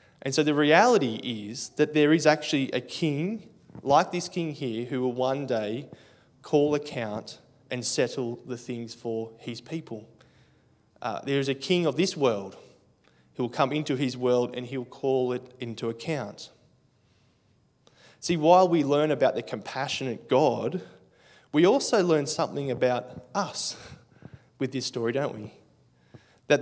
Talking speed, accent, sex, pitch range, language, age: 155 wpm, Australian, male, 125-155 Hz, English, 20-39